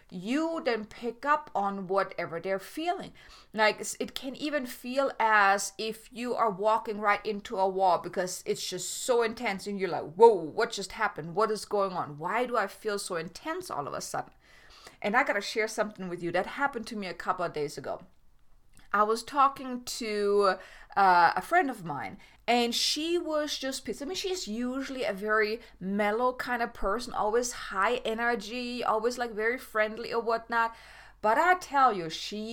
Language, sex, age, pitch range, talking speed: English, female, 30-49, 200-270 Hz, 190 wpm